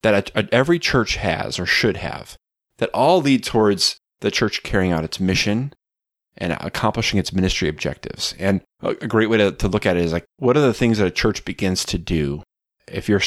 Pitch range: 95-120 Hz